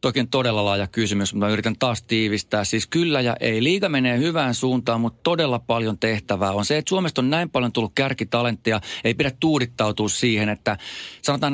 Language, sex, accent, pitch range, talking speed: Finnish, male, native, 105-125 Hz, 185 wpm